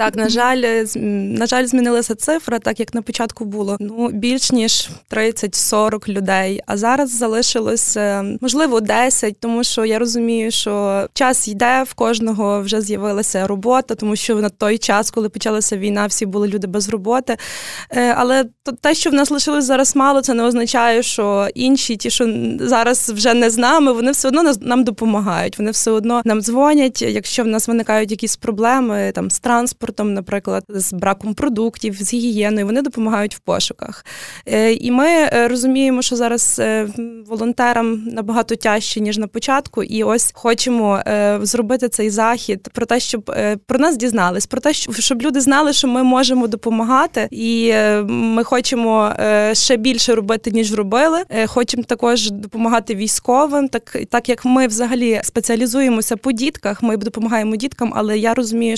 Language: Ukrainian